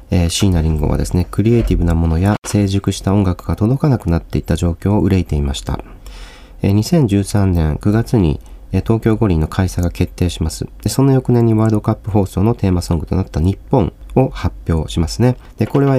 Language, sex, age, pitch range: Japanese, male, 40-59, 85-115 Hz